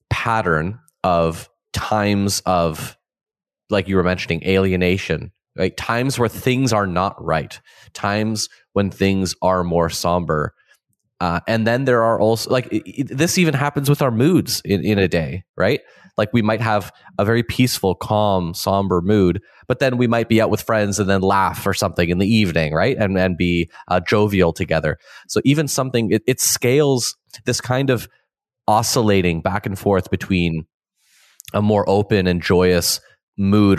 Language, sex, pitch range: English, male, 90-110 Hz